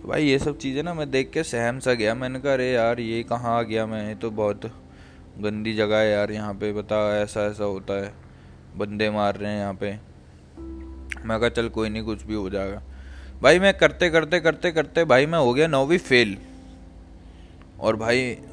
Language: Hindi